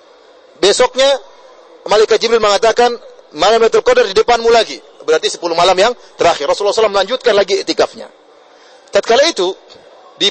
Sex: male